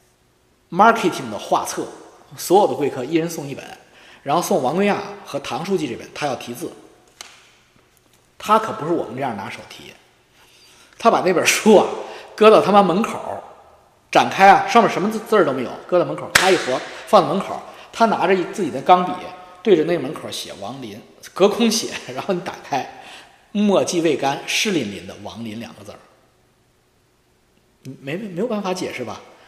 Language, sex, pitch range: Chinese, male, 140-205 Hz